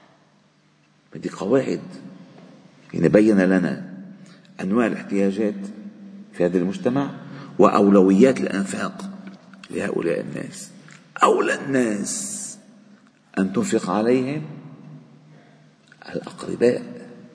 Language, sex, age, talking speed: Arabic, male, 40-59, 65 wpm